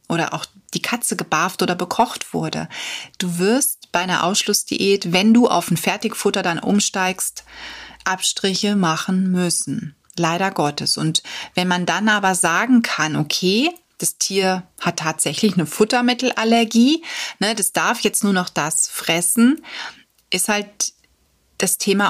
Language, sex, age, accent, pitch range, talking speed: German, female, 30-49, German, 180-225 Hz, 140 wpm